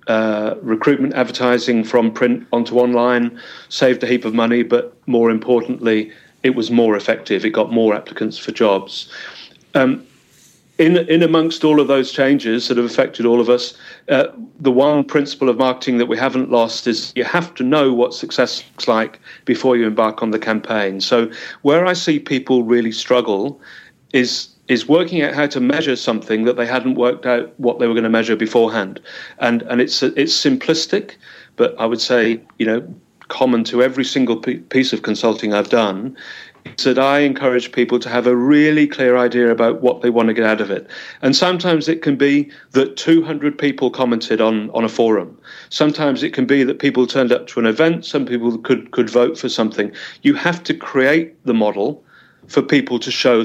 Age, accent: 40-59, British